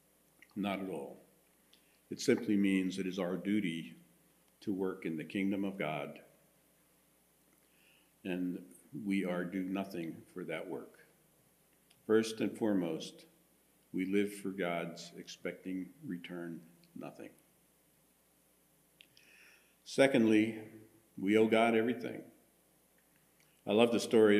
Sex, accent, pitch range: male, American, 90-105 Hz